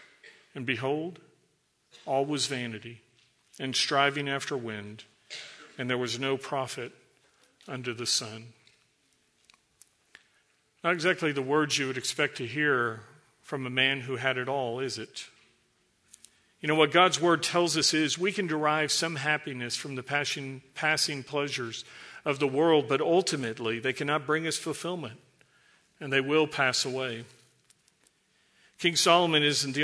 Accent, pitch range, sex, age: American, 130-155 Hz, male, 50-69